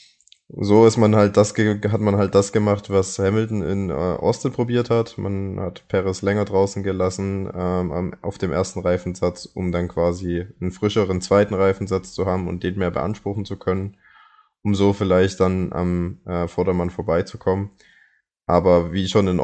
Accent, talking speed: German, 165 wpm